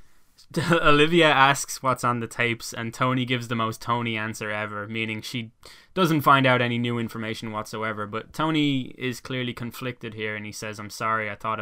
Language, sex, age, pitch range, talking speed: English, male, 10-29, 110-130 Hz, 185 wpm